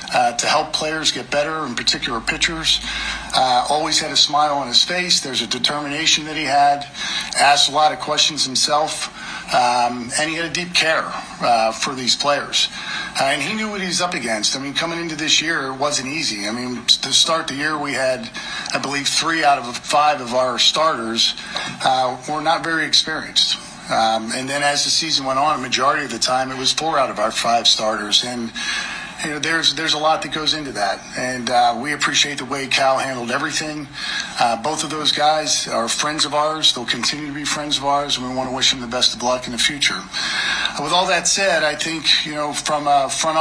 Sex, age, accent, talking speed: male, 50-69, American, 225 wpm